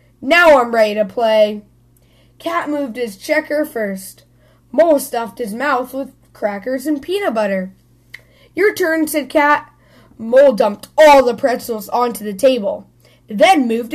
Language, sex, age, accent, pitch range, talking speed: English, female, 10-29, American, 190-295 Hz, 140 wpm